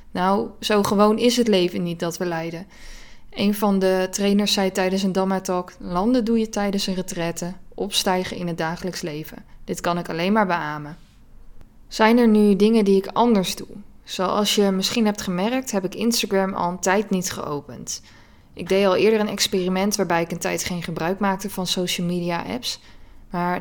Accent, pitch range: Dutch, 170-200 Hz